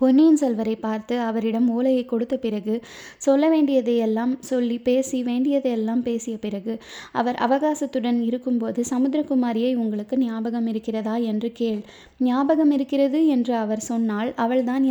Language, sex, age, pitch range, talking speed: Tamil, female, 20-39, 230-260 Hz, 120 wpm